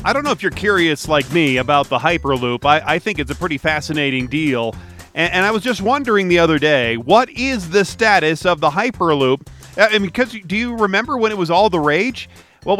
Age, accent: 40-59, American